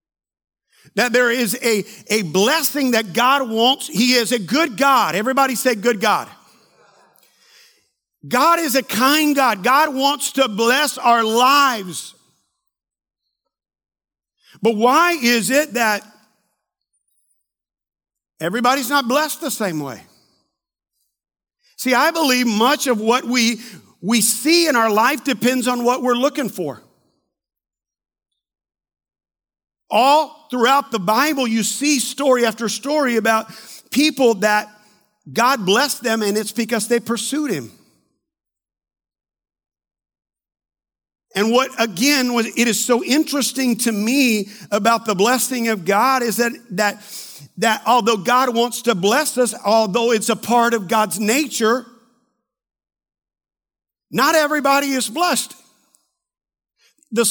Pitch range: 220-270 Hz